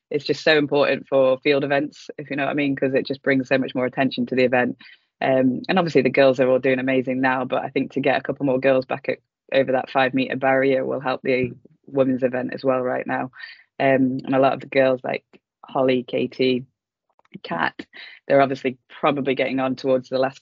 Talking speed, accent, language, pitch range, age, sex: 225 wpm, British, English, 130-135 Hz, 20-39, female